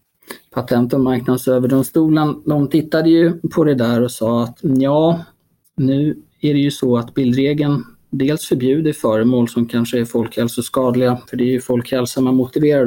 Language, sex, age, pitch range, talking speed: Swedish, male, 20-39, 120-145 Hz, 160 wpm